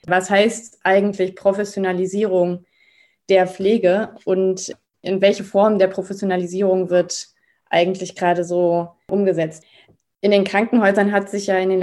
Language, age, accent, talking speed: German, 20-39, German, 125 wpm